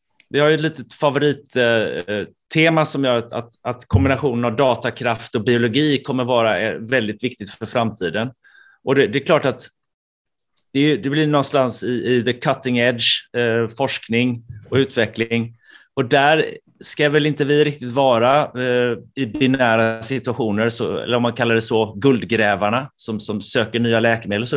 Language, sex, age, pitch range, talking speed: Swedish, male, 30-49, 115-140 Hz, 170 wpm